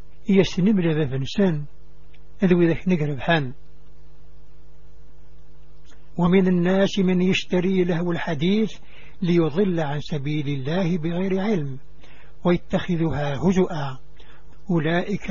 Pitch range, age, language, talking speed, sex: 150-185 Hz, 60-79, English, 70 wpm, male